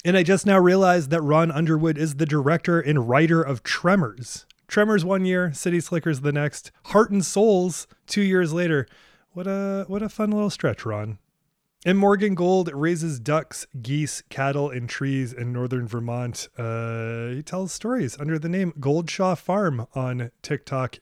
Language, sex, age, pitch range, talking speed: English, male, 20-39, 130-180 Hz, 170 wpm